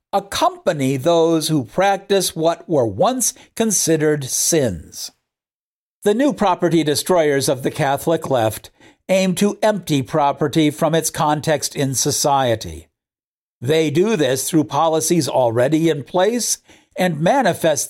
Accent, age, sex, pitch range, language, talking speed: American, 50-69, male, 150-200 Hz, English, 120 wpm